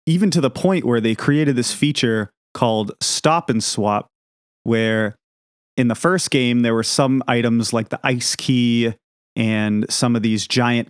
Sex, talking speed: male, 170 wpm